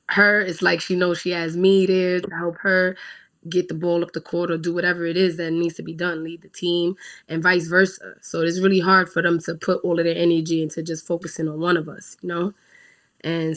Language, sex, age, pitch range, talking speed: English, female, 20-39, 160-180 Hz, 250 wpm